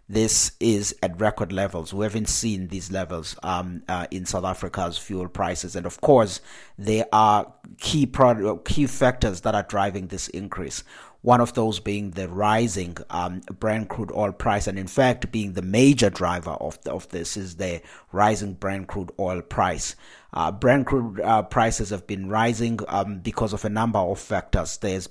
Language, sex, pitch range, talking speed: English, male, 95-115 Hz, 180 wpm